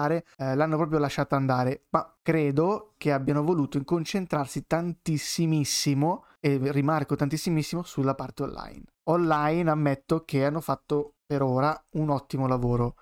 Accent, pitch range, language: native, 135-165 Hz, Italian